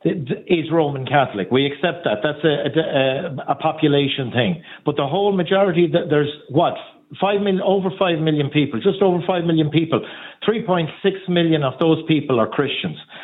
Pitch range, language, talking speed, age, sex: 145-185 Hz, English, 170 wpm, 50-69, male